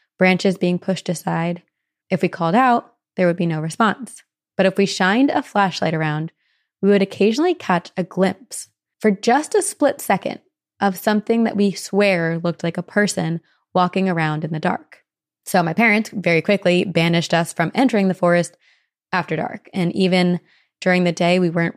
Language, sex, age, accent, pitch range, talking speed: English, female, 20-39, American, 170-205 Hz, 180 wpm